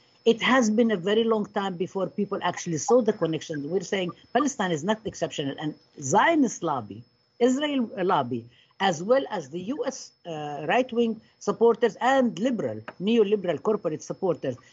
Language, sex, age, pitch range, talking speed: English, female, 50-69, 180-240 Hz, 150 wpm